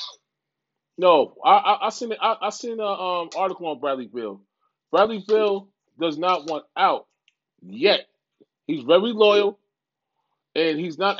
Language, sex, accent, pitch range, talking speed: English, male, American, 160-200 Hz, 150 wpm